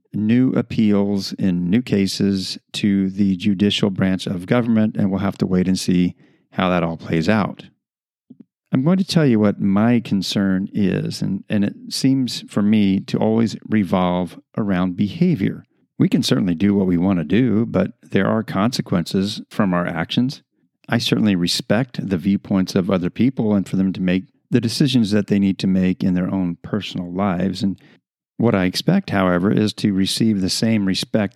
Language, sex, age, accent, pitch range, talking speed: English, male, 40-59, American, 95-115 Hz, 180 wpm